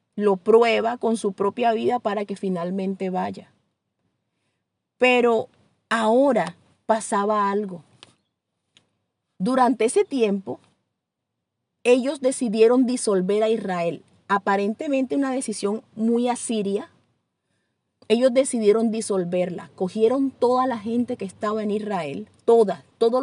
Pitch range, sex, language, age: 195-245 Hz, female, English, 30-49